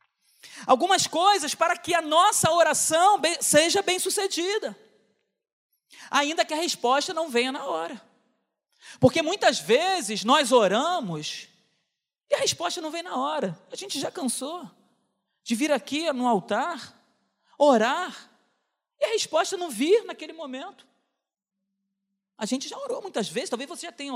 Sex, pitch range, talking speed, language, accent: male, 300-400 Hz, 140 wpm, Portuguese, Brazilian